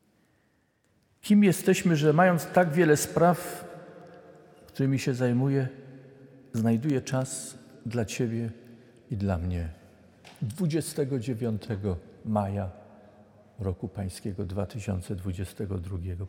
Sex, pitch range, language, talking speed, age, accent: male, 105-155 Hz, Polish, 80 wpm, 50-69, native